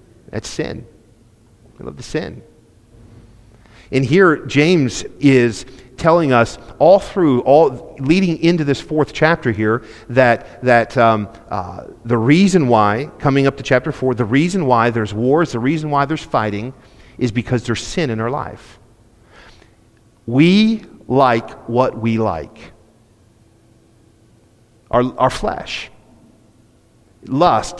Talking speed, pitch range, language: 125 wpm, 115-145 Hz, English